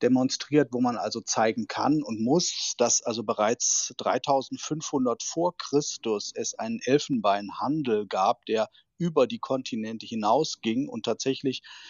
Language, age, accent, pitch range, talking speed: German, 40-59, German, 115-140 Hz, 125 wpm